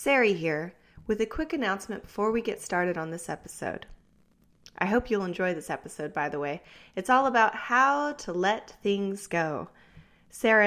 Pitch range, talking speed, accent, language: 170-225 Hz, 175 wpm, American, English